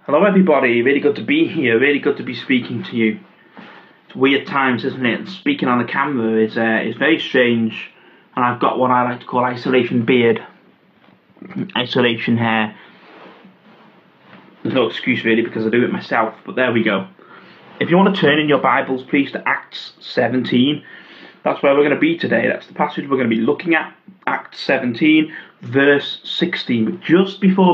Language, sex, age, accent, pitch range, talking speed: English, male, 30-49, British, 120-160 Hz, 190 wpm